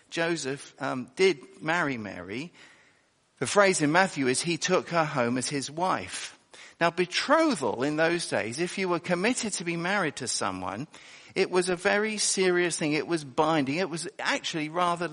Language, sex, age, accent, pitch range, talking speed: English, male, 50-69, British, 140-195 Hz, 175 wpm